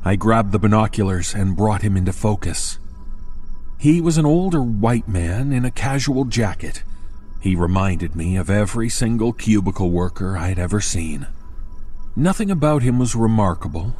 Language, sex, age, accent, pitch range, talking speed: English, male, 40-59, American, 90-120 Hz, 150 wpm